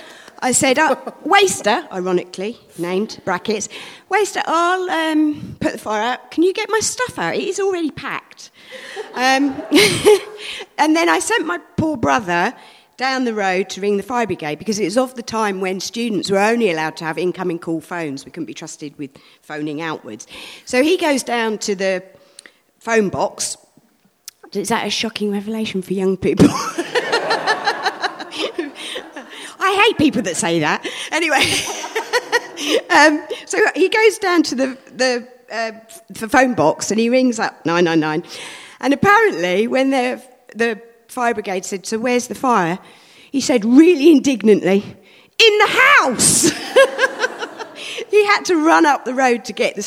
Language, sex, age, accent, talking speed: English, female, 40-59, British, 160 wpm